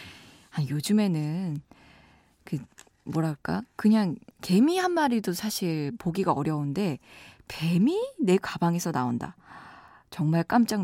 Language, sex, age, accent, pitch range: Korean, female, 20-39, native, 155-220 Hz